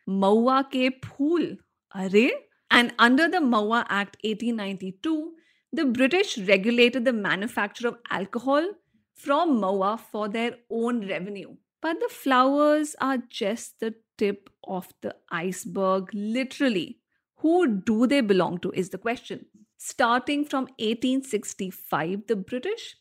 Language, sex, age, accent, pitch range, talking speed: English, female, 50-69, Indian, 200-270 Hz, 120 wpm